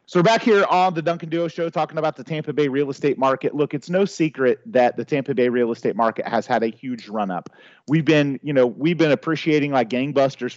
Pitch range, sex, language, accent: 125-150 Hz, male, English, American